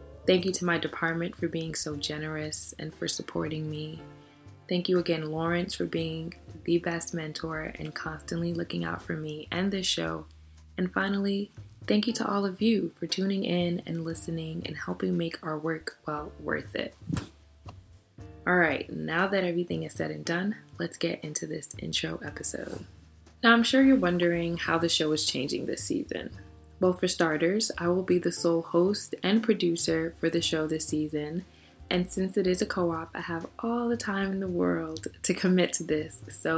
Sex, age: female, 20-39